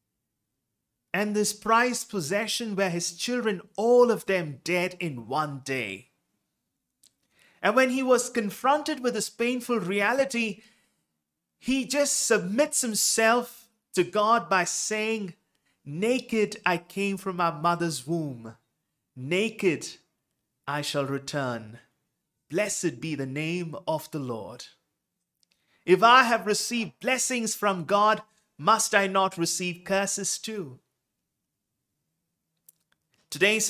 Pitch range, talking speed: 150-215 Hz, 110 wpm